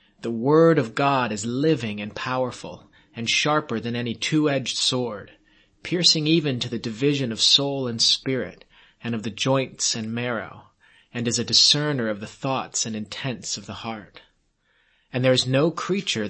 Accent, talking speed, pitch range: American, 170 wpm, 110-140 Hz